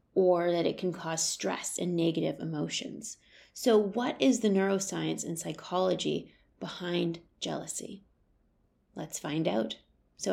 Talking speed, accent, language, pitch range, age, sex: 130 wpm, American, English, 155-195 Hz, 30-49, female